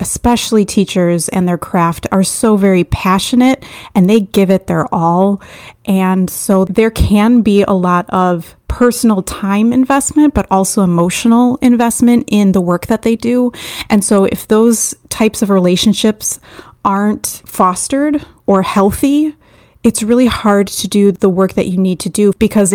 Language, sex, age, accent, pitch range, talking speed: English, female, 30-49, American, 185-225 Hz, 160 wpm